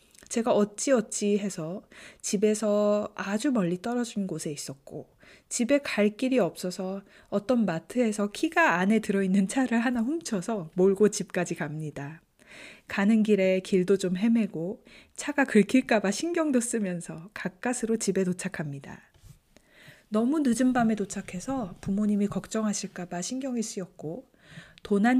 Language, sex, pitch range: Korean, female, 180-235 Hz